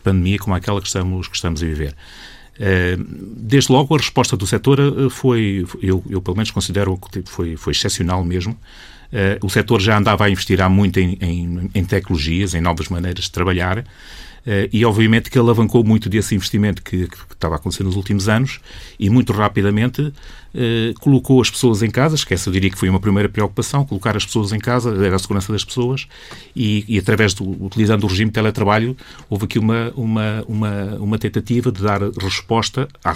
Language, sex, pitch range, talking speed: Portuguese, male, 95-120 Hz, 195 wpm